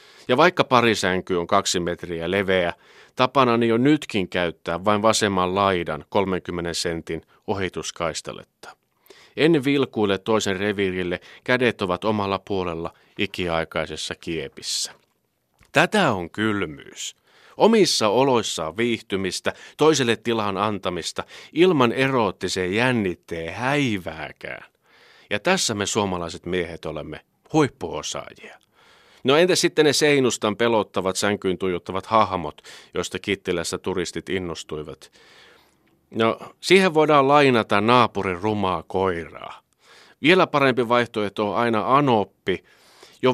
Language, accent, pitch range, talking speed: Finnish, native, 90-120 Hz, 105 wpm